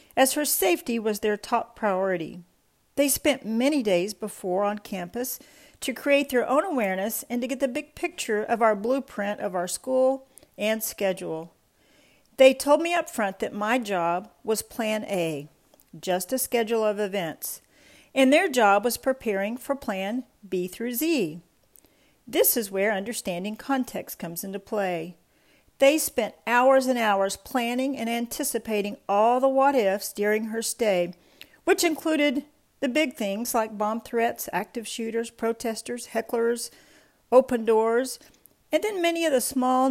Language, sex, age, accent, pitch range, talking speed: English, female, 50-69, American, 205-270 Hz, 155 wpm